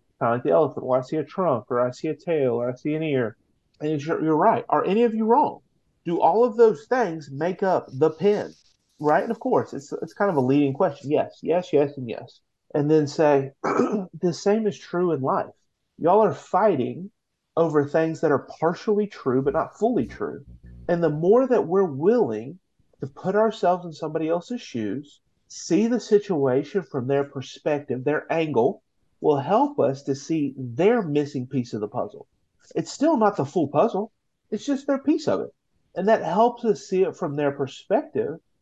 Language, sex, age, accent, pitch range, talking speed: English, male, 30-49, American, 140-210 Hz, 200 wpm